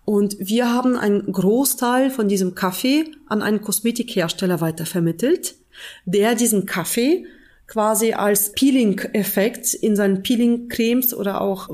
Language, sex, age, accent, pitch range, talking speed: German, female, 30-49, German, 200-245 Hz, 120 wpm